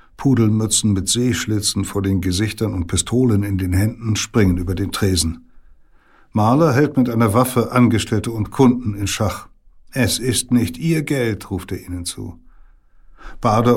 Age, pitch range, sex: 60-79, 95-115 Hz, male